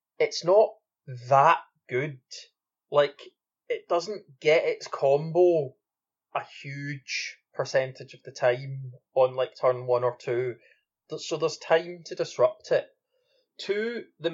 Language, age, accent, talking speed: English, 20-39, British, 125 wpm